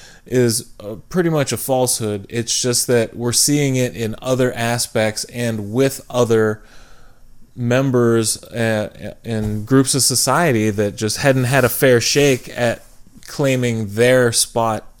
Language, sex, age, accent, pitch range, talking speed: English, male, 20-39, American, 115-140 Hz, 130 wpm